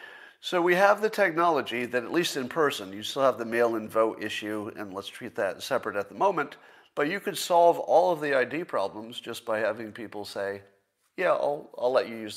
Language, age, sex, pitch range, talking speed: English, 50-69, male, 105-170 Hz, 220 wpm